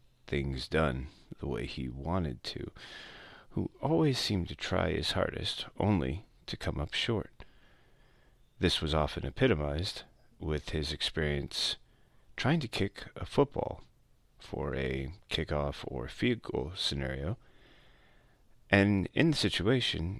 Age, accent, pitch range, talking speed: 30-49, American, 75-95 Hz, 120 wpm